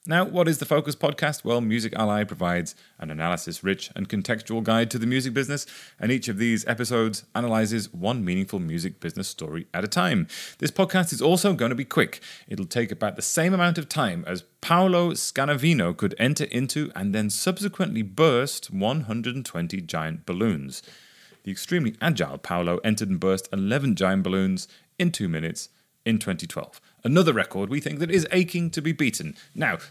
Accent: British